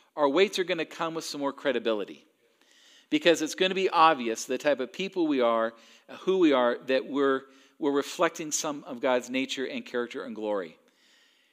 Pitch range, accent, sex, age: 135-175 Hz, American, male, 50-69